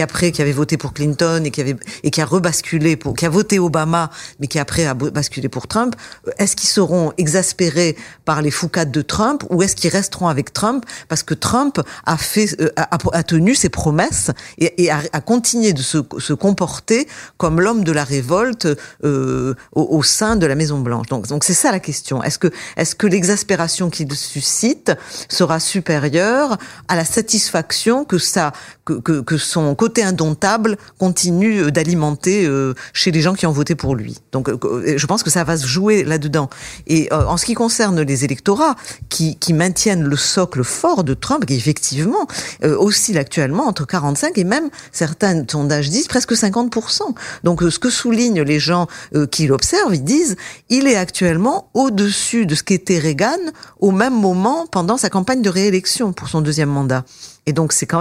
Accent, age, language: French, 40-59, French